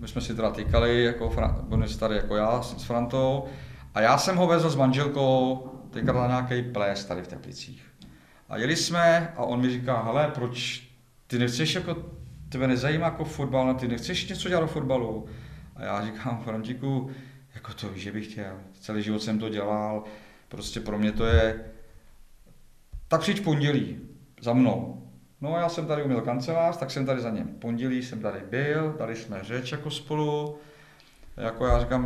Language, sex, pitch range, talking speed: Czech, male, 105-130 Hz, 180 wpm